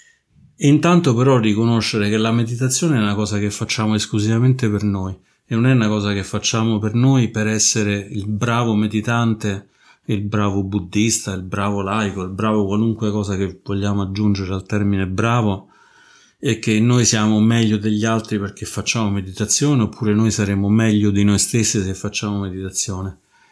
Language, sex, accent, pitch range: Italian, male, native, 100-115 Hz